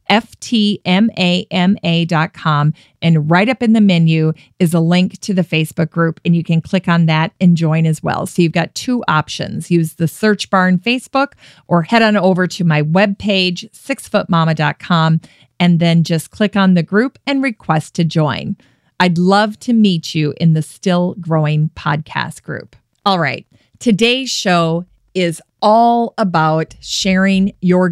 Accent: American